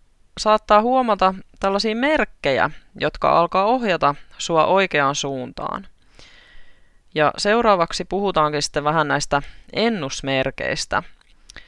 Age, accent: 20-39, native